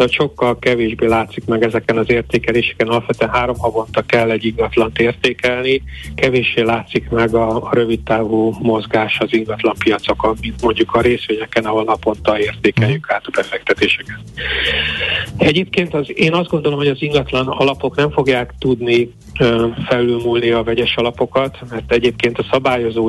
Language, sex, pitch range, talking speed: Hungarian, male, 115-125 Hz, 140 wpm